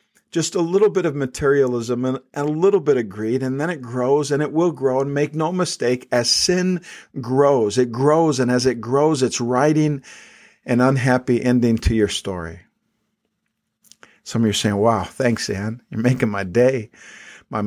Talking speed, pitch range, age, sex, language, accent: 185 wpm, 115-135 Hz, 50-69, male, English, American